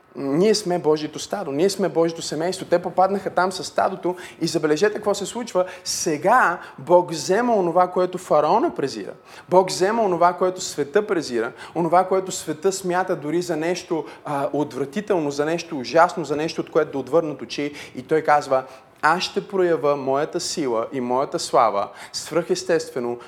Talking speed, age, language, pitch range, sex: 160 wpm, 30-49, Bulgarian, 140-175 Hz, male